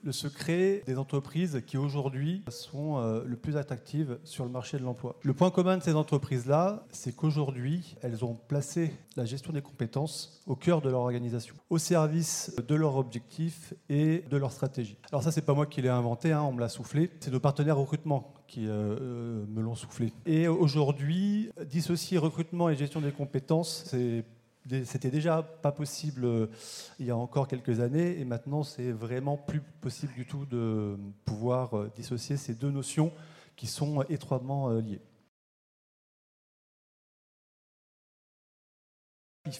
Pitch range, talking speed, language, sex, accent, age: 125-155 Hz, 160 wpm, French, male, French, 30-49